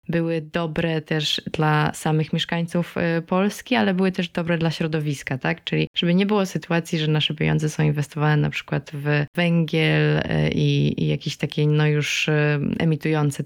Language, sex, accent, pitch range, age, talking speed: Polish, female, native, 150-185 Hz, 20-39, 150 wpm